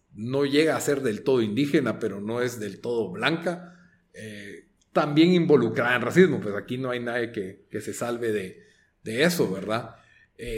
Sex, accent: male, Mexican